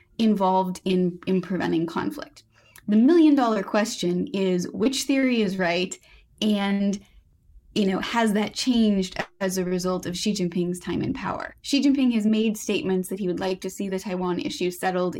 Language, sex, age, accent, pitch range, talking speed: English, female, 20-39, American, 180-215 Hz, 175 wpm